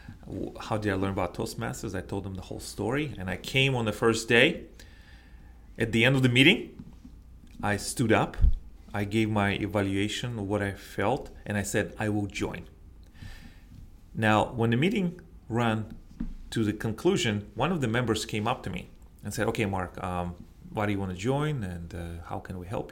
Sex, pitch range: male, 95-115 Hz